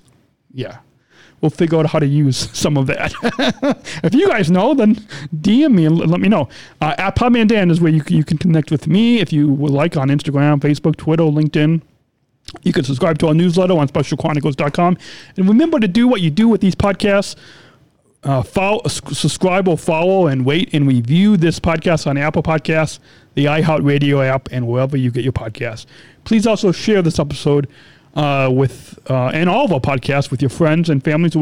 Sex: male